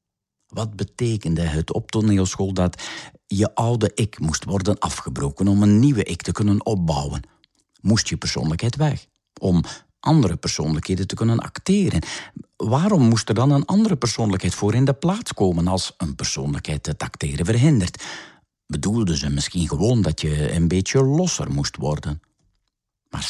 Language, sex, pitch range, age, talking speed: Dutch, male, 85-130 Hz, 50-69, 150 wpm